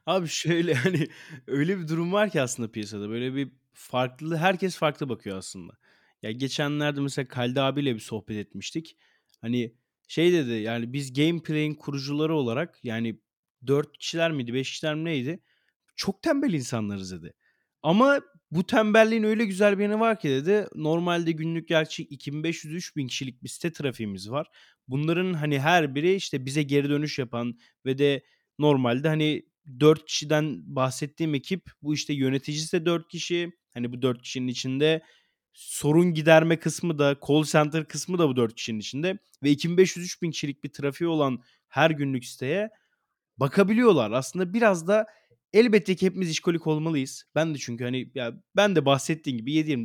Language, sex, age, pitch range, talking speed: Turkish, male, 30-49, 130-175 Hz, 155 wpm